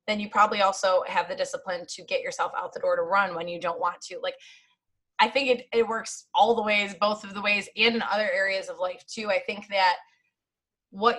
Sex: female